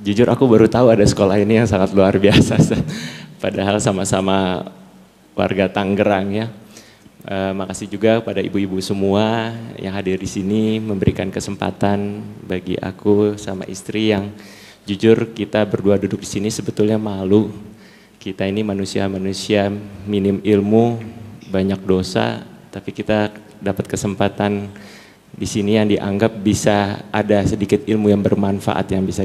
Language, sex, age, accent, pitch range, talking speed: Indonesian, male, 30-49, native, 100-110 Hz, 130 wpm